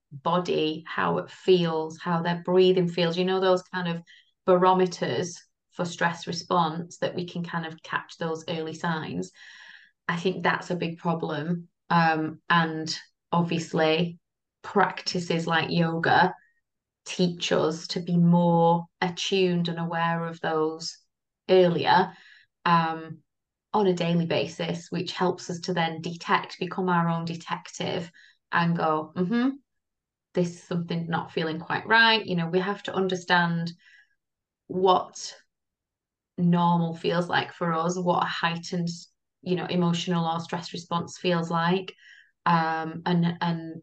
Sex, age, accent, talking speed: female, 20-39, British, 135 wpm